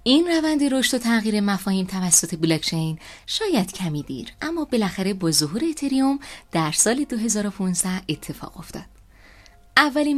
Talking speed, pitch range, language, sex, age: 130 wpm, 155-225 Hz, Persian, female, 30-49